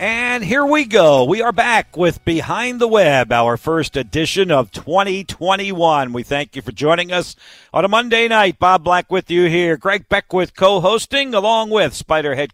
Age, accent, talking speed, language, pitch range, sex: 50-69, American, 180 wpm, English, 125-175 Hz, male